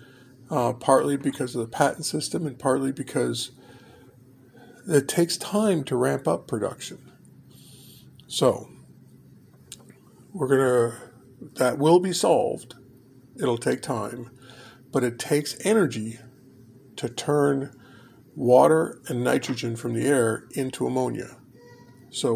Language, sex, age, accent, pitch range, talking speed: English, male, 50-69, American, 125-140 Hz, 115 wpm